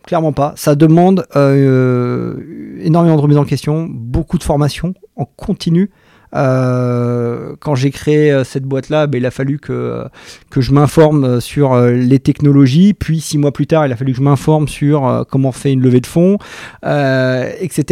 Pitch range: 125-155 Hz